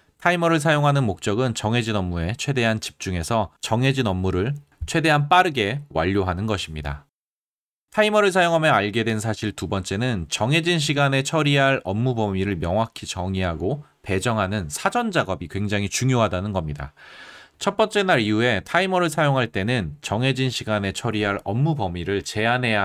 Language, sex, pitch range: Korean, male, 95-145 Hz